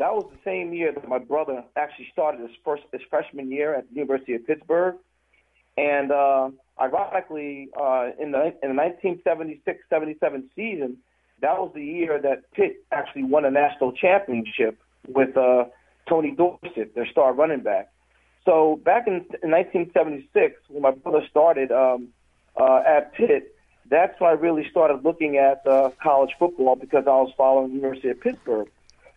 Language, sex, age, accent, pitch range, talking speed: English, male, 40-59, American, 135-175 Hz, 160 wpm